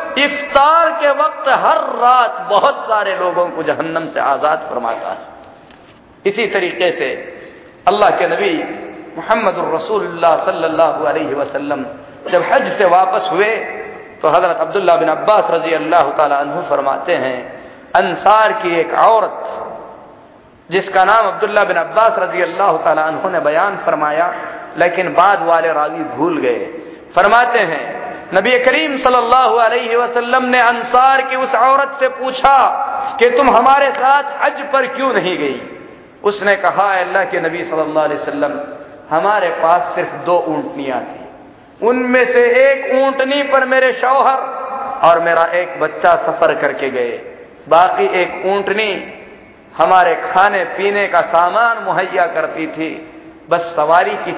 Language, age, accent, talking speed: Hindi, 40-59, native, 135 wpm